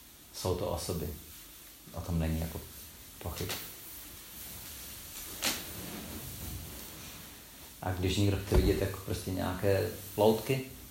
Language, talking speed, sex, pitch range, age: Czech, 95 wpm, male, 85-110 Hz, 40-59